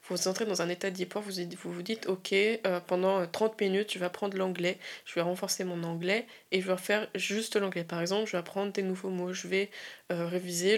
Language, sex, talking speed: French, female, 235 wpm